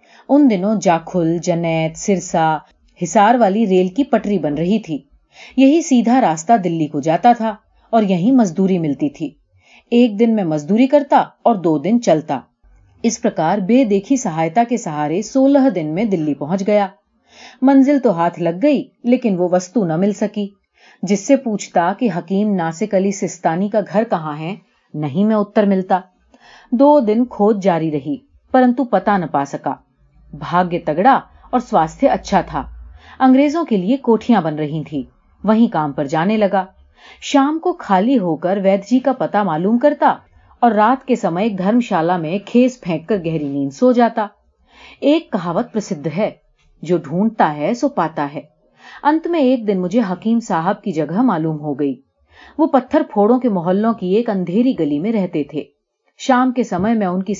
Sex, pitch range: female, 170-240 Hz